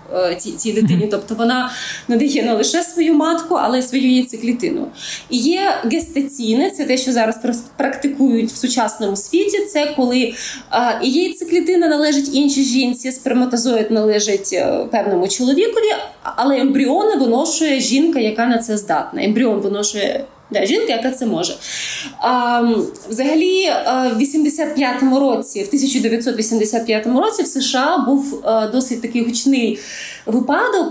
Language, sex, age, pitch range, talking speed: Ukrainian, female, 20-39, 225-285 Hz, 120 wpm